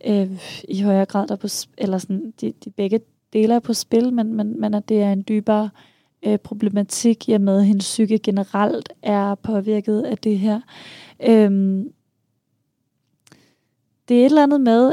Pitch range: 205-235 Hz